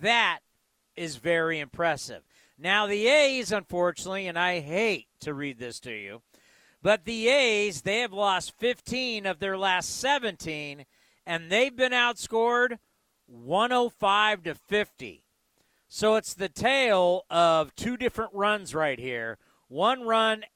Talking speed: 135 wpm